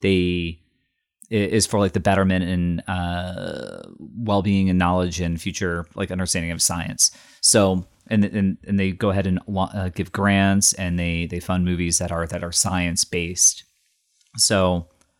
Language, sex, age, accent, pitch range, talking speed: English, male, 30-49, American, 90-100 Hz, 165 wpm